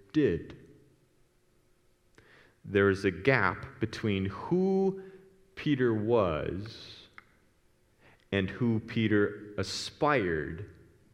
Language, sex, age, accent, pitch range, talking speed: English, male, 30-49, American, 95-115 Hz, 65 wpm